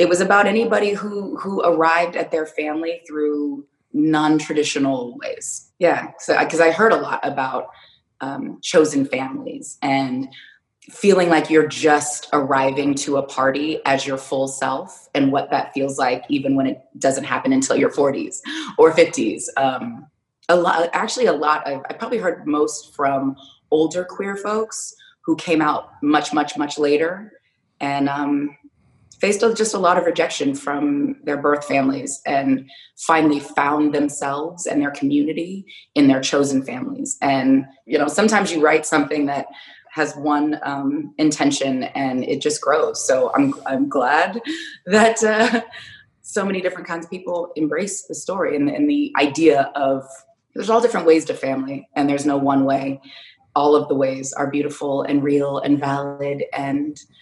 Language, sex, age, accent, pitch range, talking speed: English, female, 20-39, American, 140-205 Hz, 165 wpm